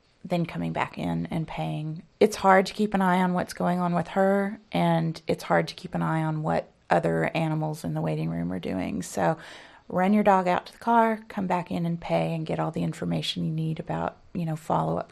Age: 30-49